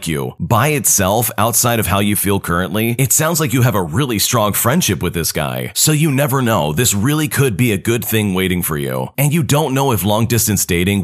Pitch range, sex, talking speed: 95-130 Hz, male, 230 wpm